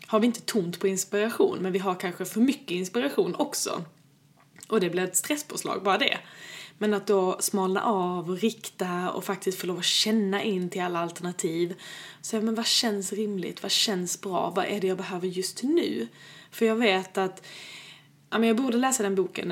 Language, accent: Swedish, native